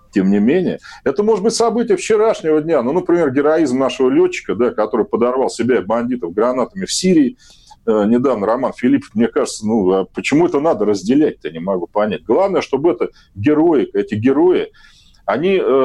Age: 40-59